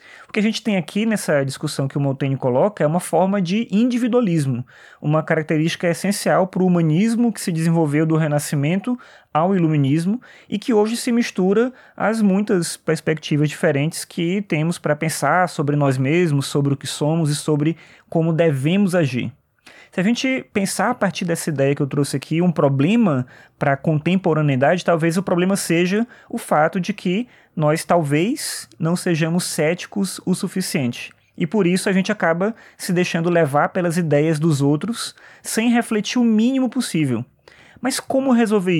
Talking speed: 165 wpm